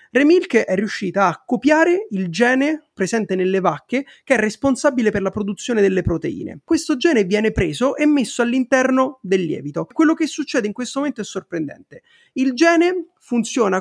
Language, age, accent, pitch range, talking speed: Italian, 30-49, native, 195-285 Hz, 165 wpm